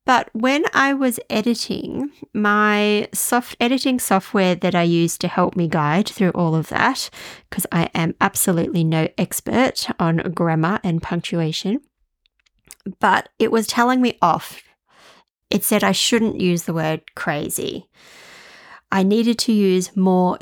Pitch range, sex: 175-225 Hz, female